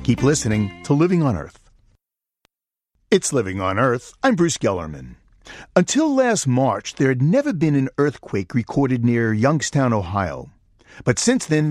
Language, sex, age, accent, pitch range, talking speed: English, male, 50-69, American, 105-155 Hz, 150 wpm